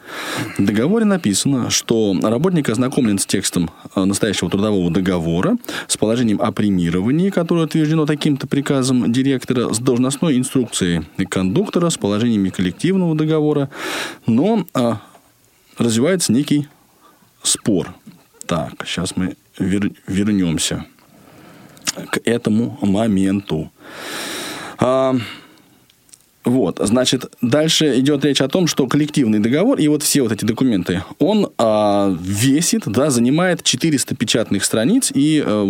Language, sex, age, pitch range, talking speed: Russian, male, 20-39, 100-155 Hz, 115 wpm